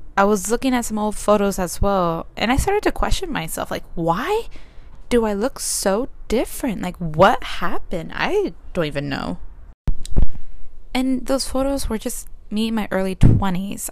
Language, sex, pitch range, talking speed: English, female, 155-230 Hz, 170 wpm